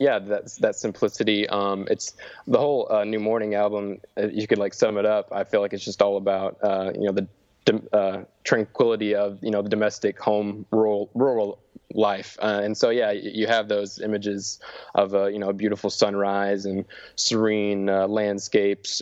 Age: 20-39